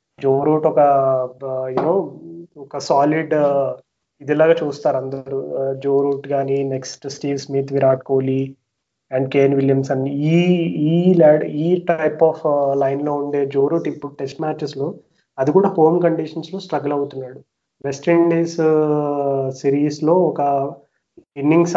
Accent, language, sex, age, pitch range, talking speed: native, Telugu, male, 20-39, 135-160 Hz, 120 wpm